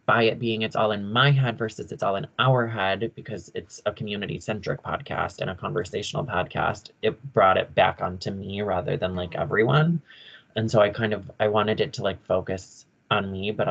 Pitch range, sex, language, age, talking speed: 105-130 Hz, male, English, 20-39, 210 wpm